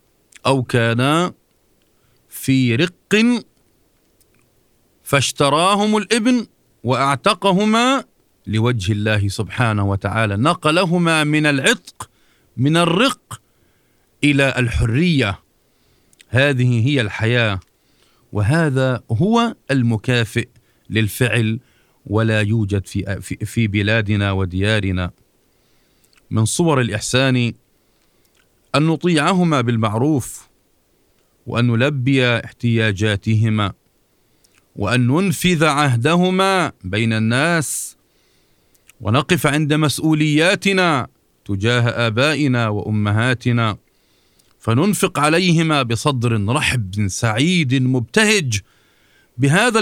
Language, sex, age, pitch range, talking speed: Arabic, male, 40-59, 110-150 Hz, 70 wpm